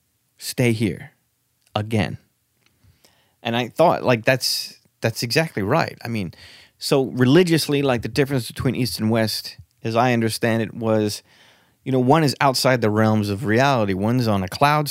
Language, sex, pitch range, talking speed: English, male, 100-130 Hz, 160 wpm